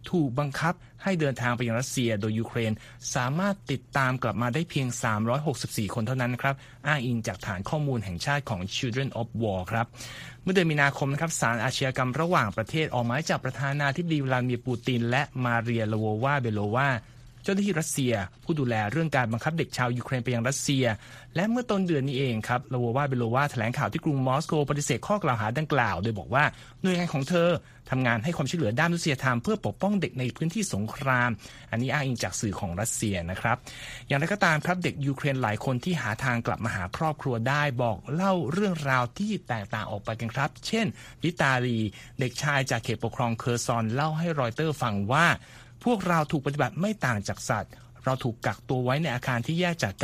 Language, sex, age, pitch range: Thai, male, 30-49, 115-150 Hz